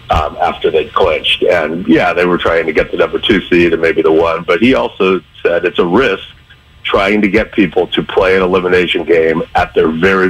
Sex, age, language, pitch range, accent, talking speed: male, 50-69, English, 95-140 Hz, American, 220 wpm